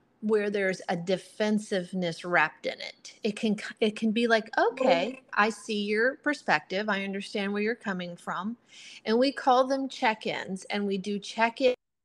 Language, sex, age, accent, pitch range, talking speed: English, female, 30-49, American, 190-245 Hz, 170 wpm